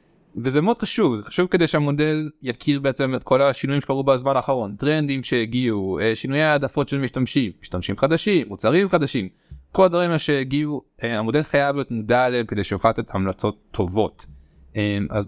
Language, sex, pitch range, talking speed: Hebrew, male, 110-155 Hz, 155 wpm